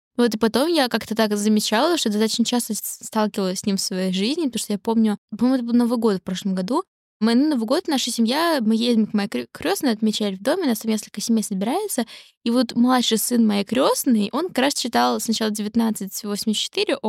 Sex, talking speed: female, 205 wpm